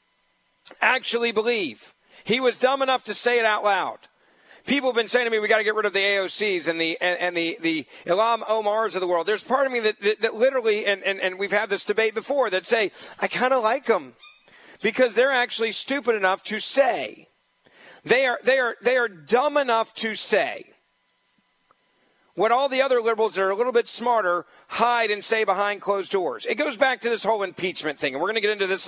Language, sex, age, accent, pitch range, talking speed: English, male, 40-59, American, 190-245 Hz, 225 wpm